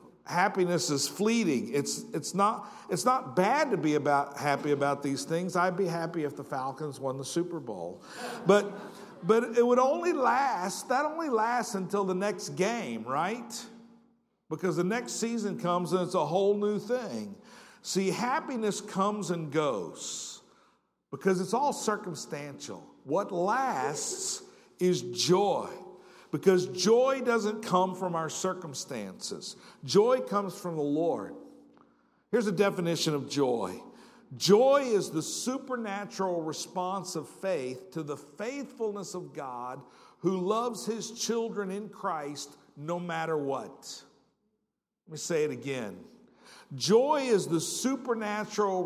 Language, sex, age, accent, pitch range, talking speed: English, male, 50-69, American, 160-220 Hz, 135 wpm